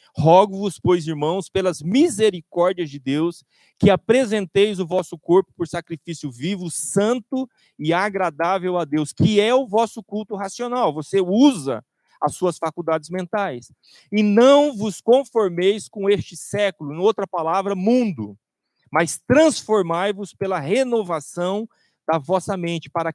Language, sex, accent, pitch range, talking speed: Portuguese, male, Brazilian, 165-220 Hz, 130 wpm